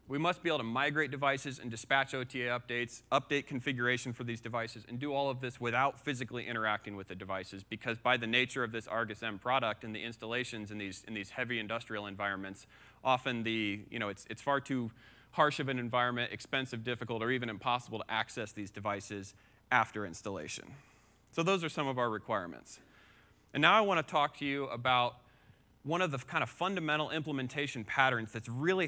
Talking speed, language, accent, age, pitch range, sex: 195 wpm, English, American, 30-49, 110-140 Hz, male